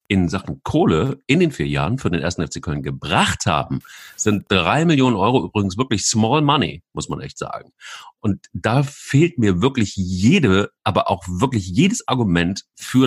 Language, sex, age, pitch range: German, male, 40-59, 85-110 Hz